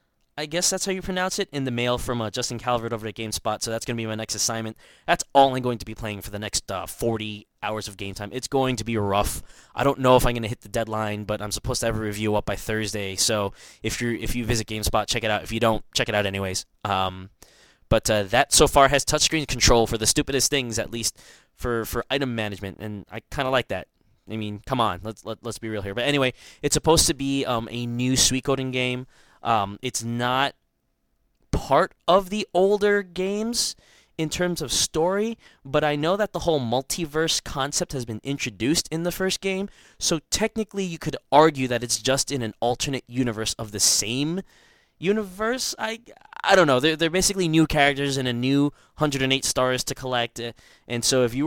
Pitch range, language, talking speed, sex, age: 110-145 Hz, English, 225 wpm, male, 20-39